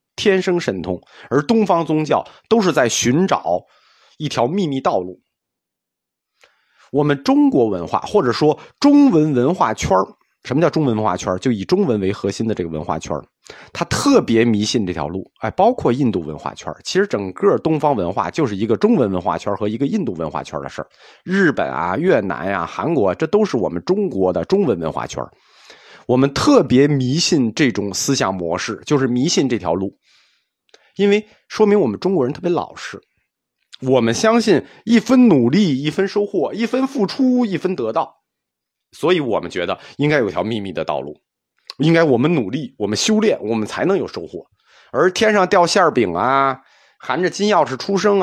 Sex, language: male, Chinese